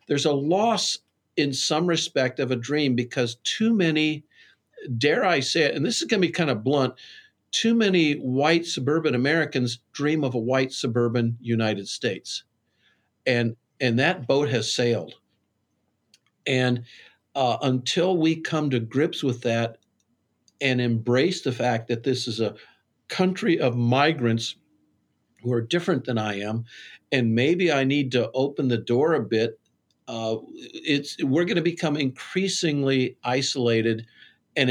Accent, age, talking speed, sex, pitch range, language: American, 50-69, 150 wpm, male, 120-175 Hz, English